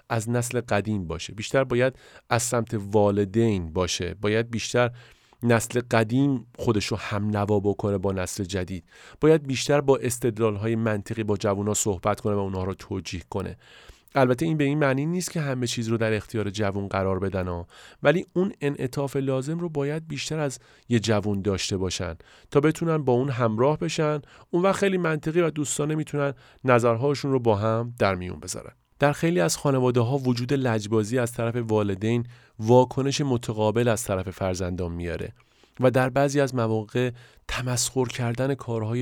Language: Persian